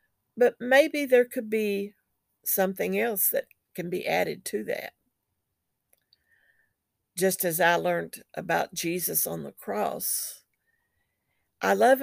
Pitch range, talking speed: 175-245 Hz, 120 wpm